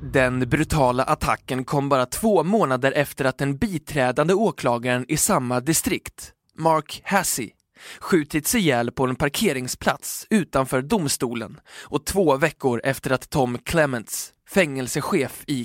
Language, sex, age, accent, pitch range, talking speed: Swedish, male, 20-39, native, 125-160 Hz, 130 wpm